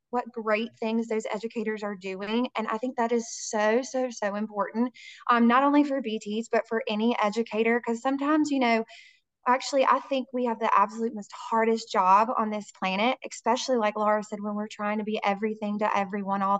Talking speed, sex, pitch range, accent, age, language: 200 wpm, female, 215-255 Hz, American, 20-39, English